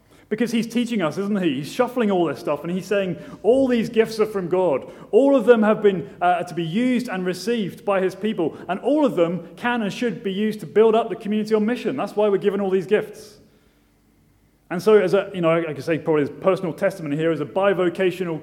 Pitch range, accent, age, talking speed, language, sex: 155-200 Hz, British, 30-49, 240 wpm, English, male